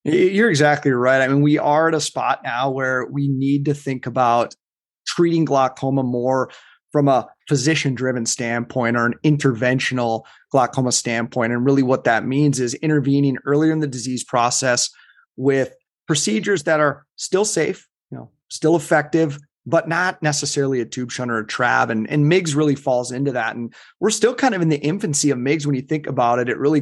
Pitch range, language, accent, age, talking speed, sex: 130-150 Hz, English, American, 30-49, 190 wpm, male